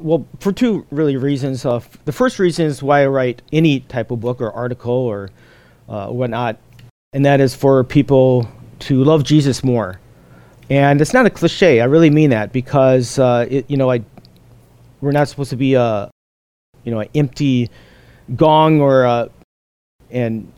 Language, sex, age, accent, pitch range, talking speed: English, male, 40-59, American, 125-145 Hz, 180 wpm